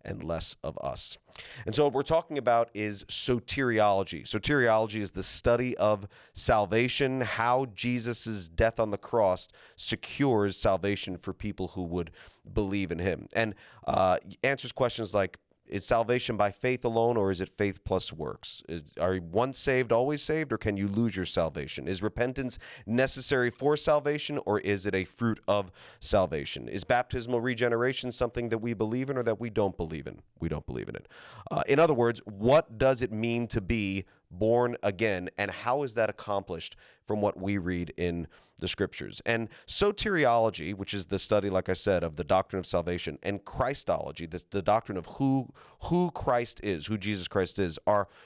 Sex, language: male, English